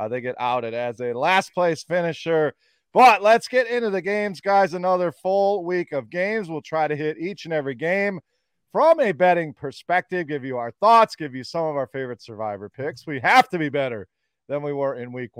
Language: English